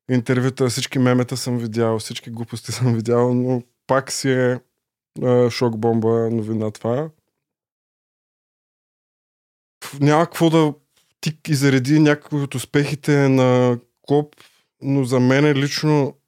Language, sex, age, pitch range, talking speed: Bulgarian, male, 20-39, 115-130 Hz, 120 wpm